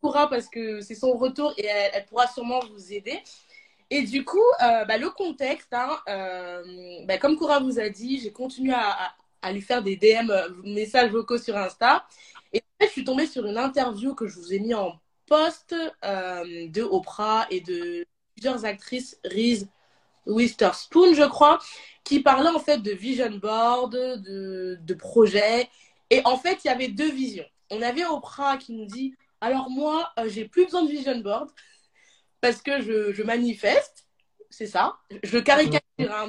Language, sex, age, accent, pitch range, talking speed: French, female, 20-39, French, 215-295 Hz, 180 wpm